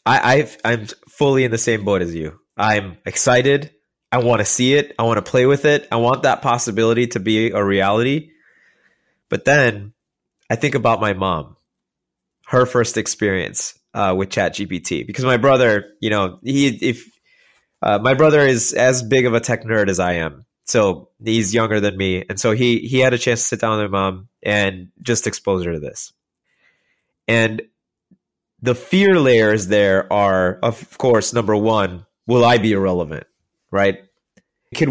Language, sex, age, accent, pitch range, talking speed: English, male, 20-39, American, 100-120 Hz, 180 wpm